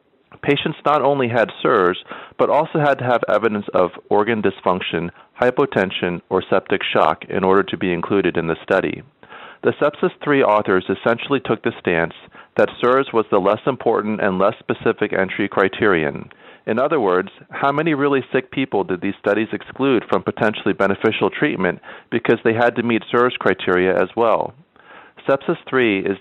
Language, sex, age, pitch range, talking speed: English, male, 40-59, 95-130 Hz, 165 wpm